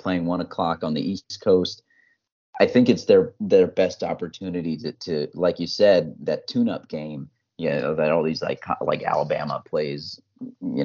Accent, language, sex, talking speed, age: American, English, male, 175 wpm, 30-49